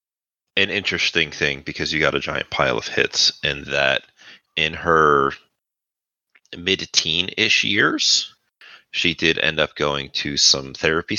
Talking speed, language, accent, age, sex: 135 wpm, English, American, 30-49, male